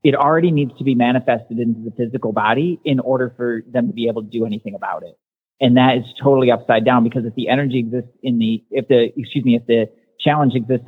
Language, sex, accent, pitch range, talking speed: English, male, American, 115-140 Hz, 235 wpm